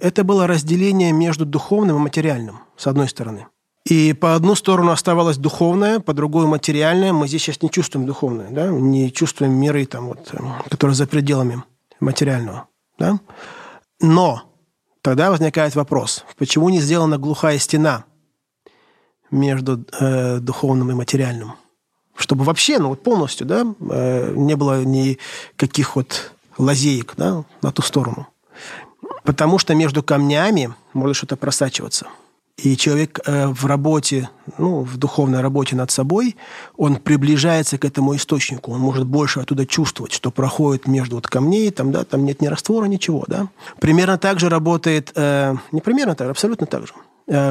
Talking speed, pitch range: 145 wpm, 135-165 Hz